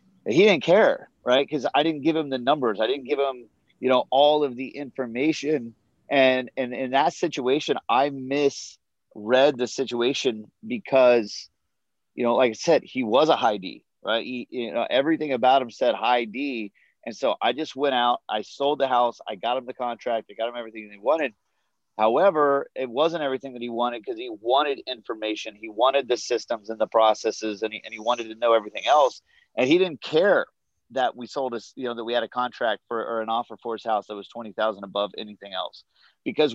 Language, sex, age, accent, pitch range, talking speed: English, male, 30-49, American, 110-140 Hz, 210 wpm